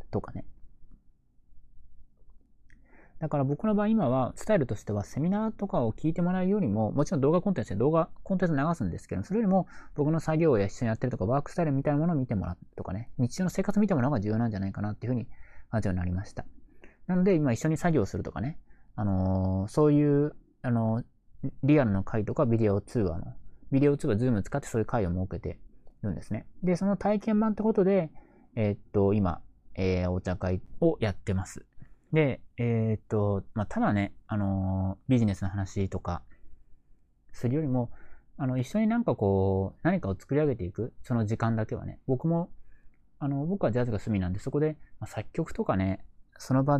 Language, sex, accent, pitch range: Japanese, male, native, 100-155 Hz